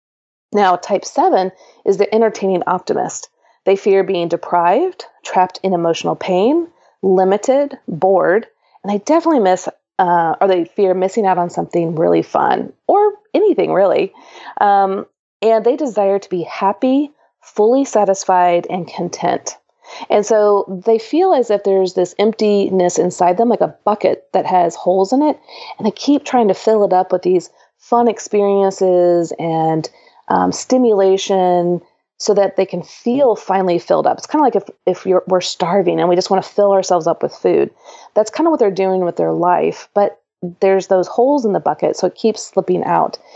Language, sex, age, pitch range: English, female, 30-49, 180-220 Hz